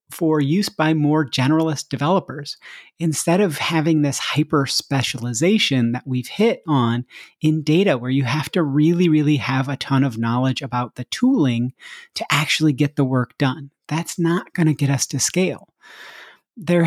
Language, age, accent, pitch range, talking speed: English, 30-49, American, 135-165 Hz, 165 wpm